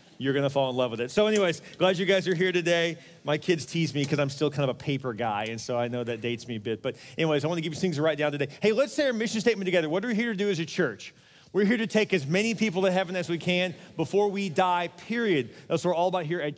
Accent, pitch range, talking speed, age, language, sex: American, 180-225 Hz, 310 wpm, 30-49, English, male